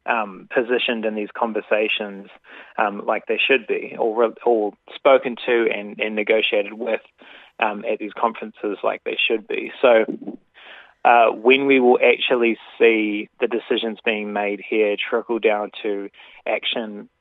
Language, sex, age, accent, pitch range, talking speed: English, male, 20-39, Australian, 105-135 Hz, 150 wpm